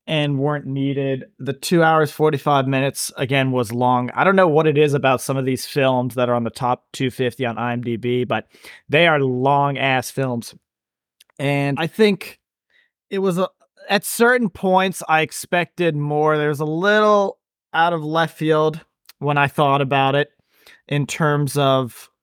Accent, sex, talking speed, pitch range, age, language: American, male, 165 wpm, 125-150 Hz, 30-49, English